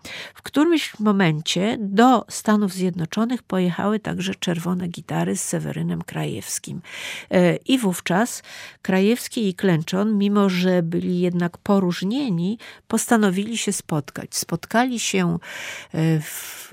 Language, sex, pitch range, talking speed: Polish, female, 180-215 Hz, 105 wpm